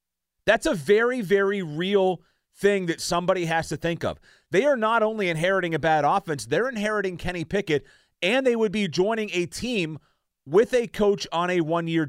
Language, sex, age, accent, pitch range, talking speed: English, male, 30-49, American, 145-205 Hz, 185 wpm